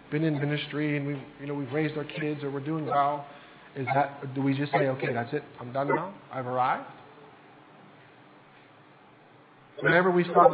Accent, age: American, 50-69